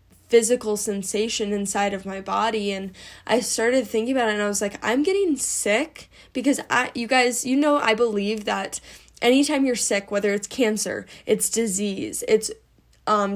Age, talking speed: 10-29, 170 wpm